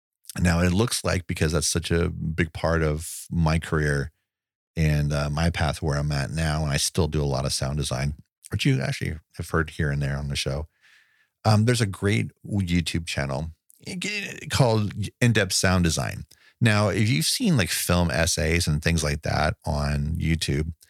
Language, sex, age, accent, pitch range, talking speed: English, male, 40-59, American, 80-105 Hz, 185 wpm